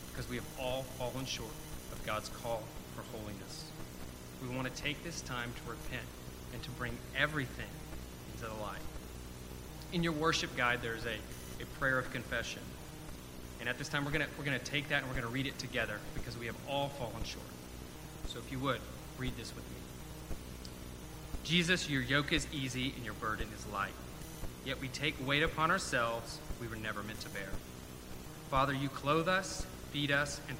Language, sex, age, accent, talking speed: English, male, 30-49, American, 190 wpm